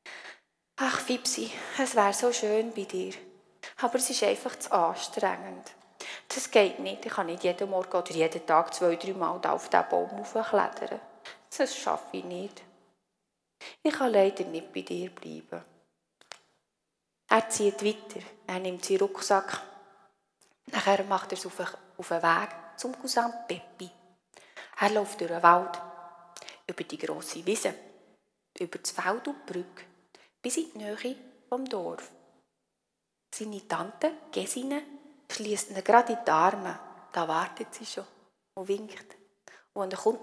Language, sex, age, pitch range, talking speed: German, female, 30-49, 180-235 Hz, 150 wpm